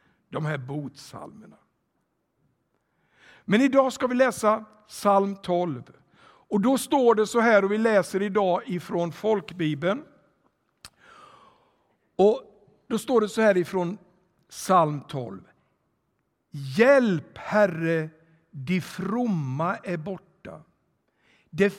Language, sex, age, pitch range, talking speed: Swedish, male, 60-79, 160-210 Hz, 105 wpm